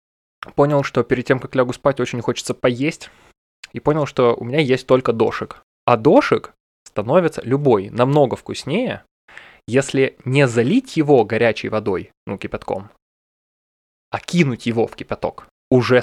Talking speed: 140 wpm